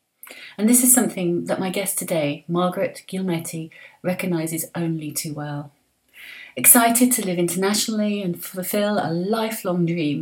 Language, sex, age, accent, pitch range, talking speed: English, female, 30-49, British, 165-195 Hz, 135 wpm